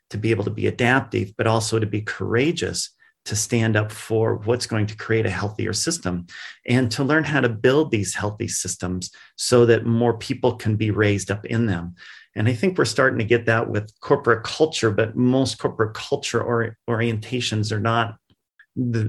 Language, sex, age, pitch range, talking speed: English, male, 40-59, 105-120 Hz, 190 wpm